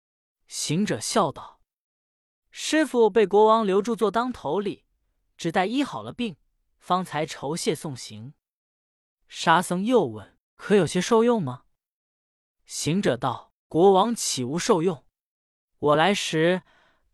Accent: native